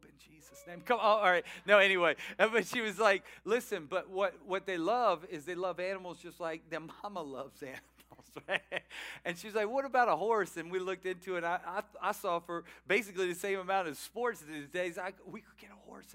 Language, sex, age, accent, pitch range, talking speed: English, male, 40-59, American, 165-215 Hz, 230 wpm